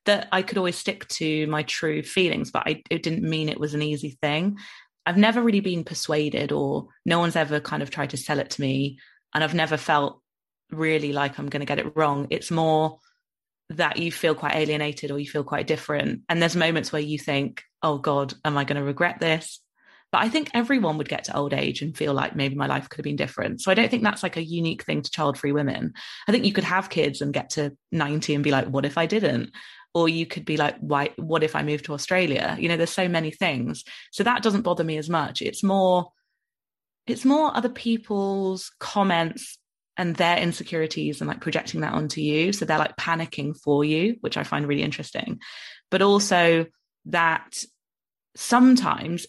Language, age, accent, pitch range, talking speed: English, 20-39, British, 150-180 Hz, 215 wpm